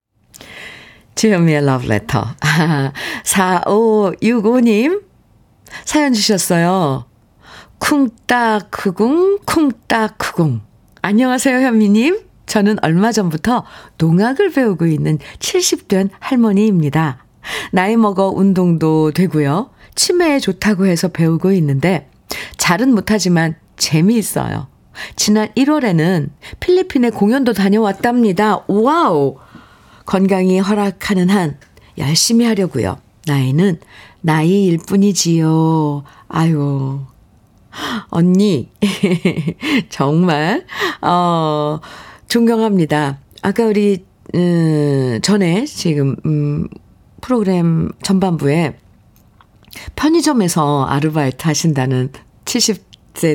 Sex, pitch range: female, 145-215 Hz